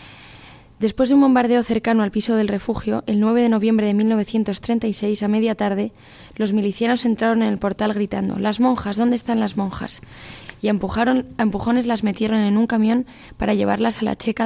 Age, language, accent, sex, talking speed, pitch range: 20-39, Spanish, Spanish, female, 185 wpm, 200-225 Hz